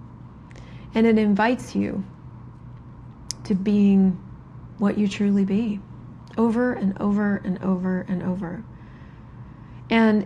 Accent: American